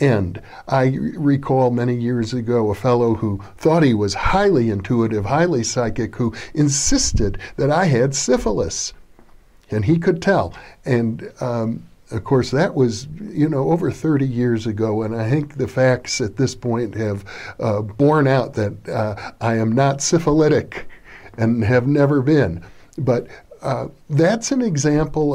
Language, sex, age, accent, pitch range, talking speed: English, male, 50-69, American, 115-150 Hz, 155 wpm